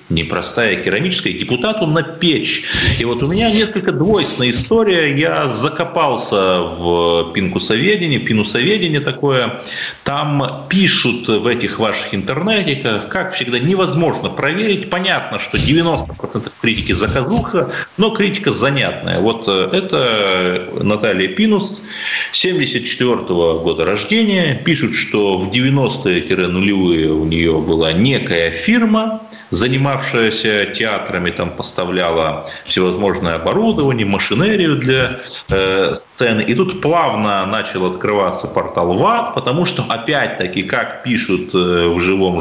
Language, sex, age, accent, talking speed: Russian, male, 40-59, native, 110 wpm